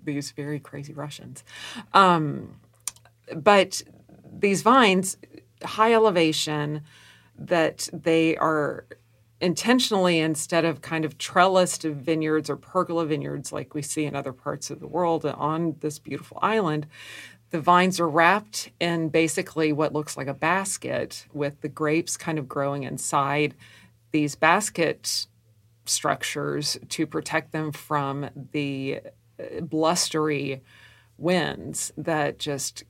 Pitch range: 135-160 Hz